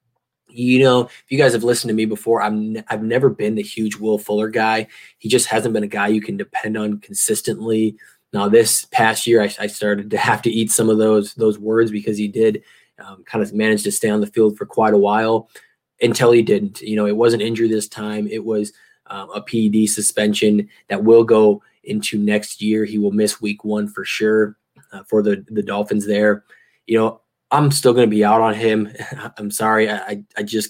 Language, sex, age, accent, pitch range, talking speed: English, male, 20-39, American, 105-110 Hz, 225 wpm